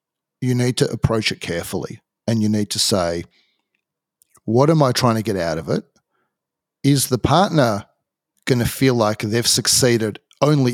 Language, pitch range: English, 110-140 Hz